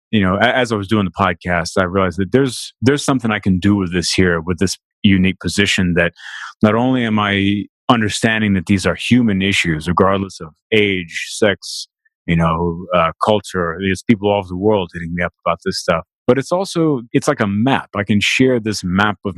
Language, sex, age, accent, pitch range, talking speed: English, male, 30-49, American, 90-110 Hz, 210 wpm